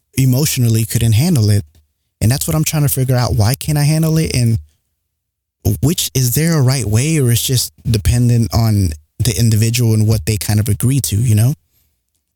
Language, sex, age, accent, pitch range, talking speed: English, male, 20-39, American, 105-125 Hz, 195 wpm